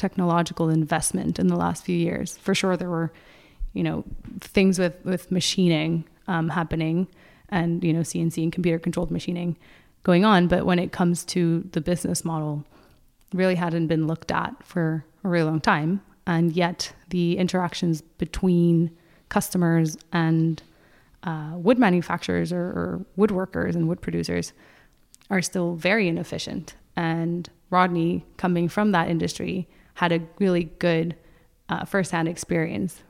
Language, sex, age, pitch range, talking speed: English, female, 20-39, 165-185 Hz, 145 wpm